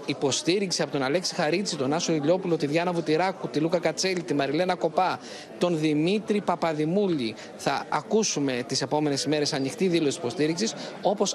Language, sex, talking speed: Greek, male, 160 wpm